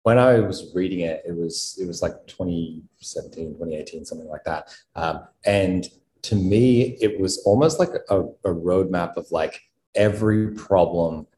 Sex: male